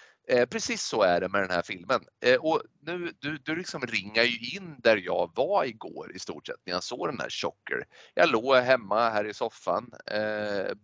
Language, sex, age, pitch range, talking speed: Swedish, male, 30-49, 115-165 Hz, 200 wpm